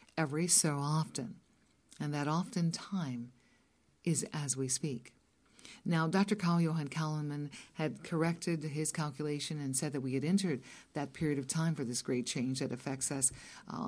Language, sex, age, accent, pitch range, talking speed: English, female, 50-69, American, 140-180 Hz, 165 wpm